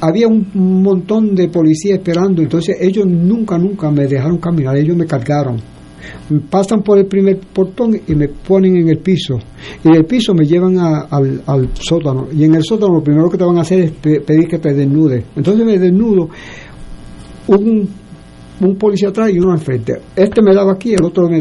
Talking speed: 200 wpm